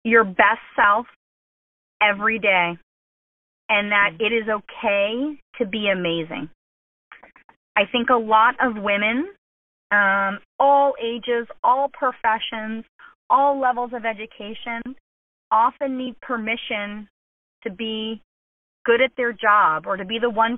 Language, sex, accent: English, female, American